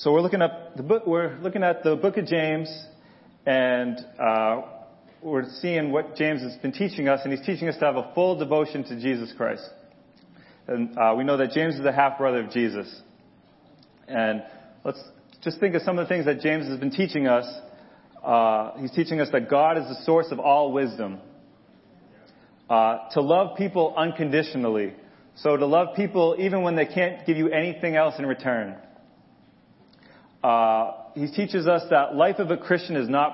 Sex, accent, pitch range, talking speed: male, American, 135-165 Hz, 185 wpm